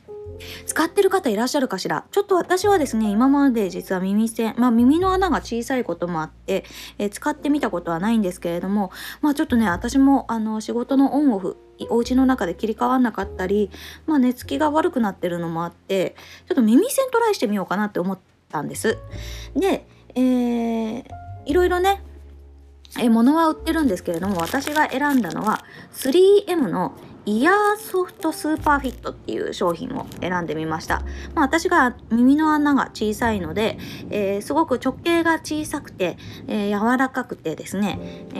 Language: Japanese